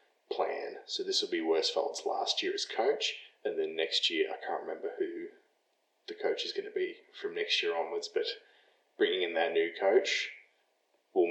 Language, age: English, 20-39